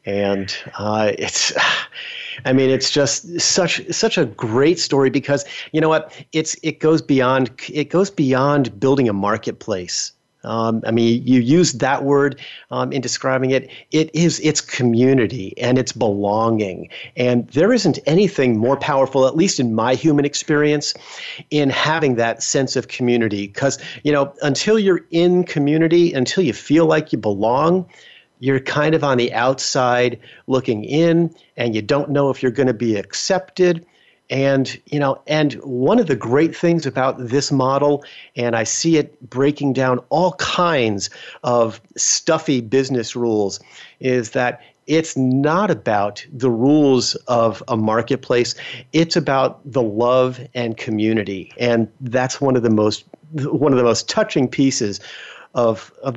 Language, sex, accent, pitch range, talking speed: English, male, American, 120-150 Hz, 155 wpm